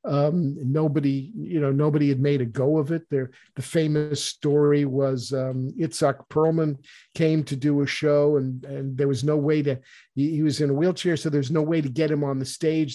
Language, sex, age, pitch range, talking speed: English, male, 50-69, 140-160 Hz, 220 wpm